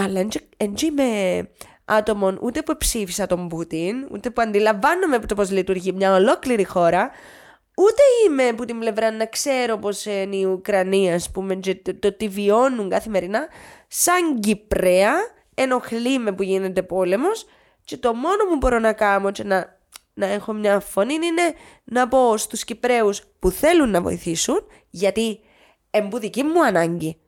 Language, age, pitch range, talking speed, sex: Greek, 20-39, 195-260 Hz, 145 wpm, female